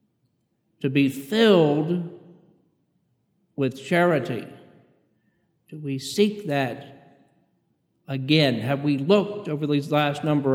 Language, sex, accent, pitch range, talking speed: English, male, American, 135-170 Hz, 95 wpm